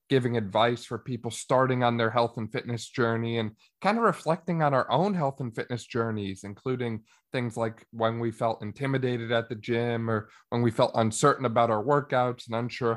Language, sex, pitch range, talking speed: English, male, 110-130 Hz, 195 wpm